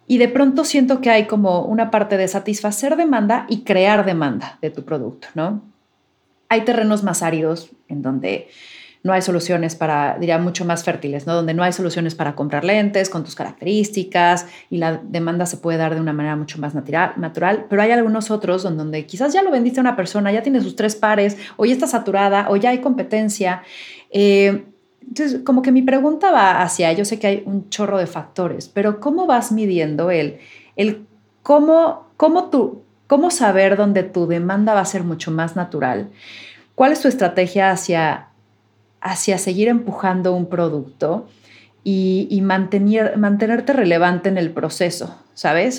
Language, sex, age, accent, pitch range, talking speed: Spanish, female, 30-49, Mexican, 175-220 Hz, 180 wpm